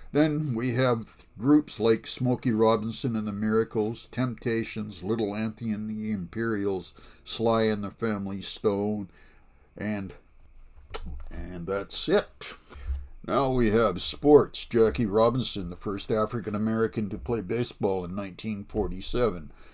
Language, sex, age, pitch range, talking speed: English, male, 60-79, 90-115 Hz, 125 wpm